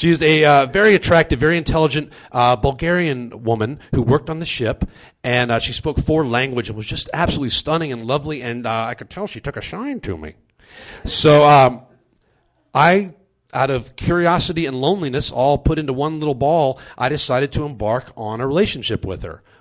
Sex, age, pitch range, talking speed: male, 40-59, 105-145 Hz, 195 wpm